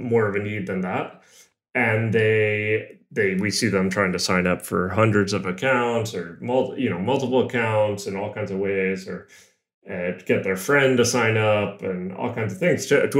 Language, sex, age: English, male, 30-49